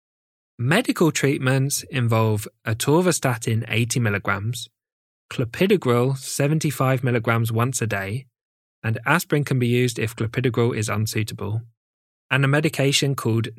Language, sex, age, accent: English, male, 20-39, British